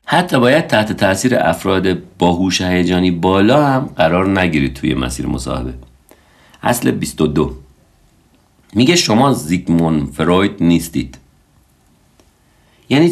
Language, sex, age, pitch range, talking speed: Persian, male, 50-69, 75-120 Hz, 100 wpm